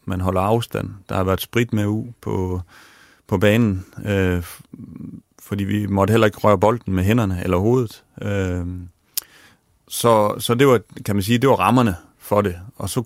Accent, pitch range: native, 90-110 Hz